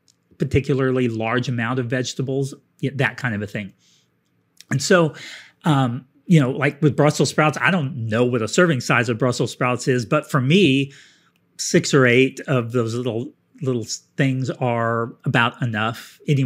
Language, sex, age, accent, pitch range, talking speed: English, male, 40-59, American, 125-155 Hz, 165 wpm